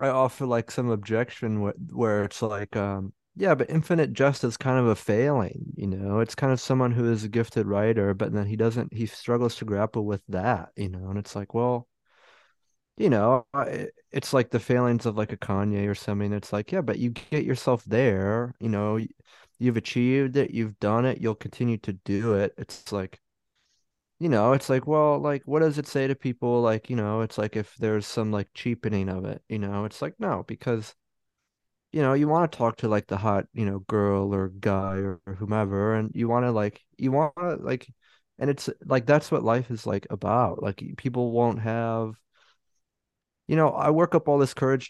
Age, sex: 30-49, male